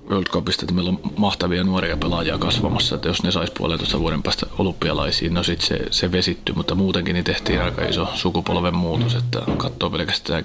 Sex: male